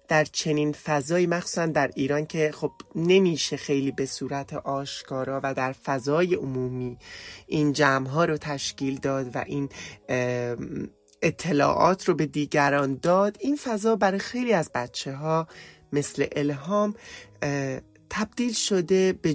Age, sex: 30-49, male